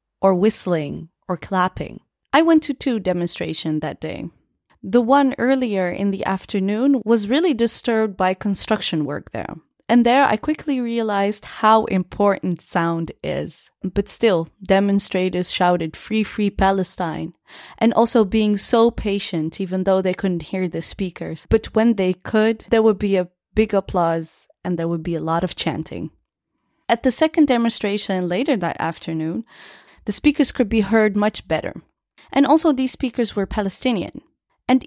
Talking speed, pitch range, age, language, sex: 155 wpm, 185-235 Hz, 20-39, Dutch, female